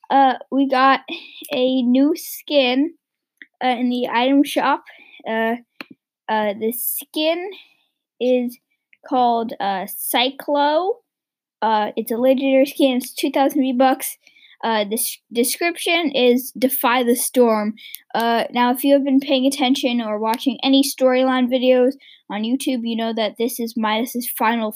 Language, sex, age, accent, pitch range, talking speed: English, female, 20-39, American, 225-275 Hz, 135 wpm